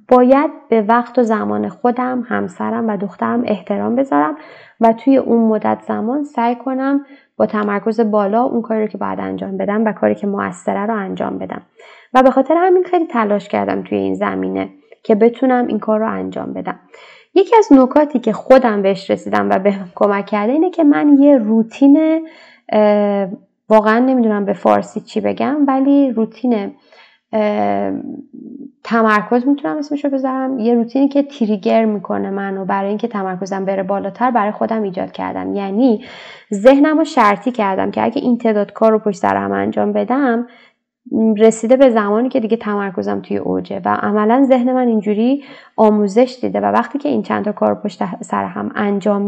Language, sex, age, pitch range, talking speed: Persian, female, 20-39, 205-260 Hz, 170 wpm